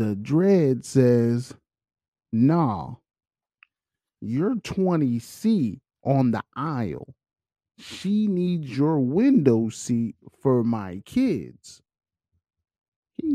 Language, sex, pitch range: English, male, 120-170 Hz